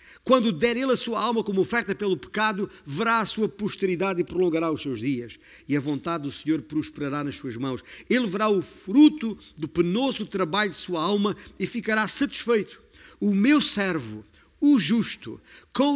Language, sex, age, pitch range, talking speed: Portuguese, male, 50-69, 150-220 Hz, 175 wpm